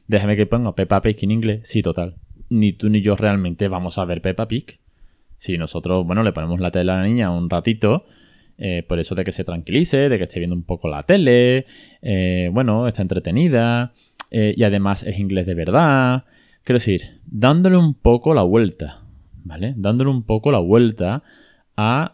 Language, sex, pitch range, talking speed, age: Spanish, male, 90-125 Hz, 190 wpm, 20-39